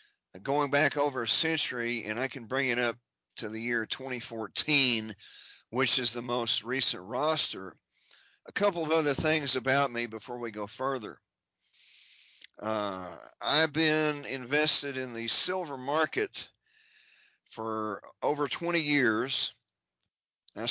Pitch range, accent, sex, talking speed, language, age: 120-145 Hz, American, male, 130 wpm, English, 40-59